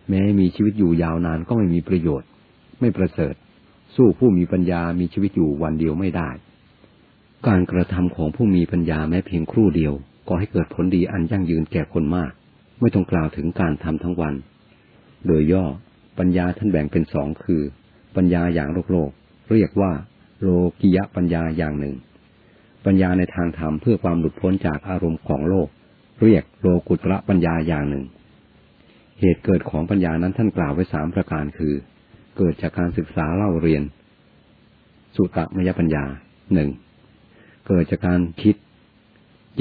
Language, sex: Thai, male